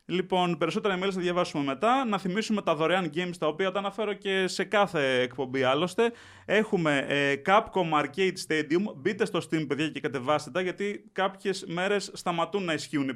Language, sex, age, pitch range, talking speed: Greek, male, 20-39, 145-195 Hz, 180 wpm